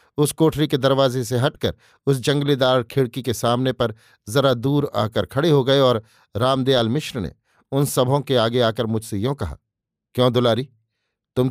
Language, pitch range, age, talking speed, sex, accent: Hindi, 120-145 Hz, 50-69, 170 wpm, male, native